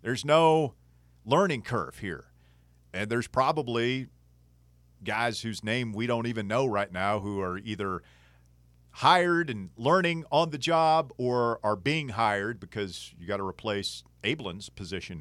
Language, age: English, 40-59